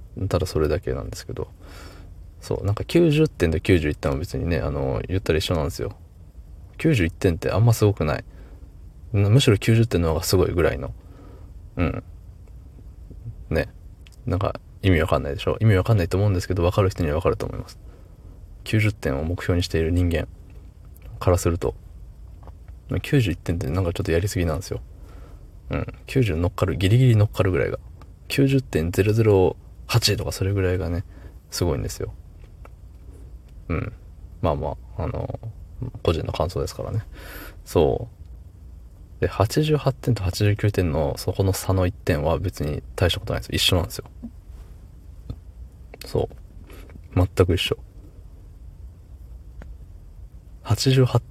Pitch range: 80-100 Hz